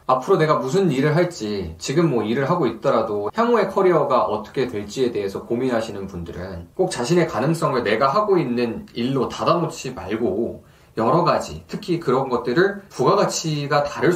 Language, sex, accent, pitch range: Korean, male, native, 120-165 Hz